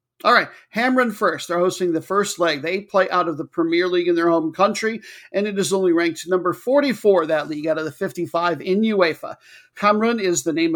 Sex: male